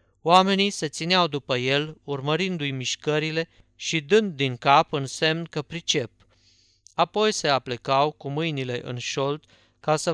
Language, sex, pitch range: Romanian, male, 130-165 Hz